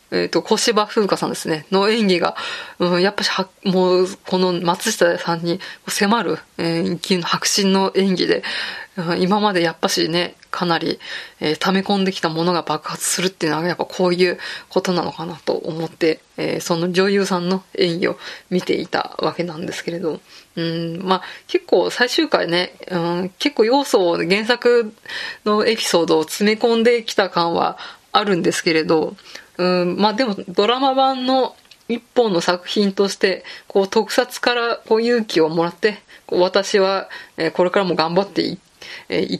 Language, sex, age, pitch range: Japanese, female, 20-39, 175-220 Hz